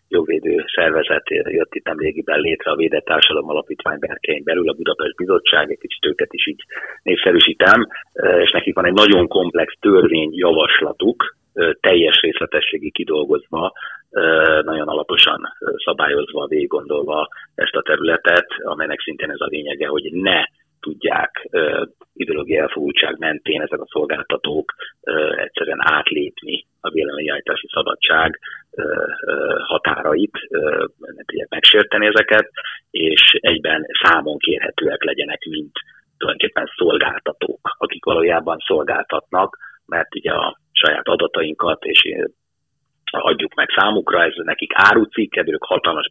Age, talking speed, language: 30-49, 115 wpm, Hungarian